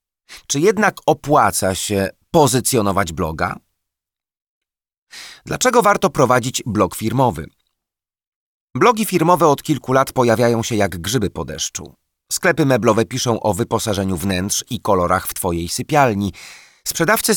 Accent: native